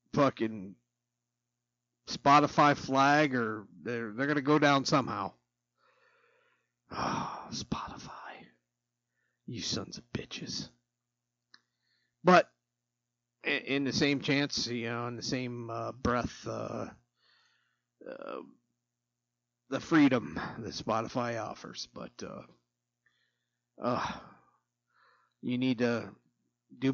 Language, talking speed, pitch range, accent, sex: English, 95 wpm, 100-135 Hz, American, male